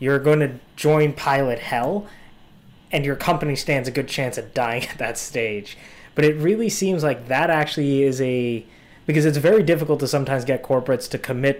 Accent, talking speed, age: American, 190 wpm, 20-39